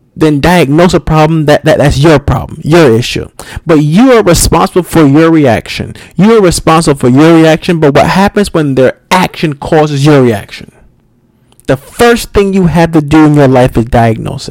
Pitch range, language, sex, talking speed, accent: 125-180 Hz, English, male, 185 wpm, American